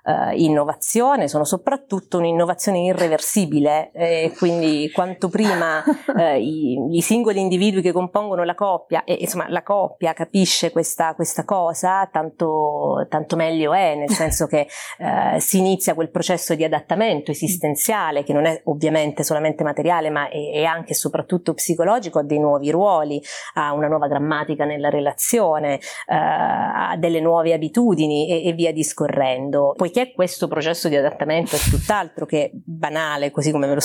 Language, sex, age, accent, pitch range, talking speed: Italian, female, 30-49, native, 150-180 Hz, 155 wpm